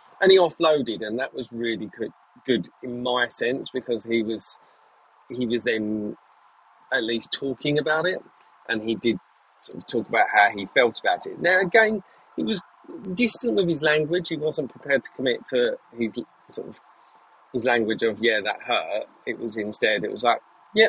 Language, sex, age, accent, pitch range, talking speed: English, male, 30-49, British, 110-150 Hz, 185 wpm